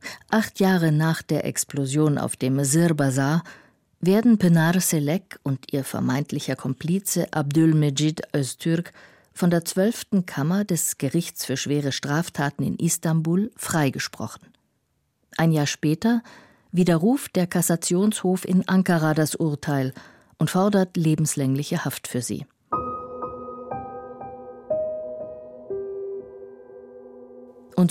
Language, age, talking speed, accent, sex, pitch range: German, 50-69, 100 wpm, German, female, 140-195 Hz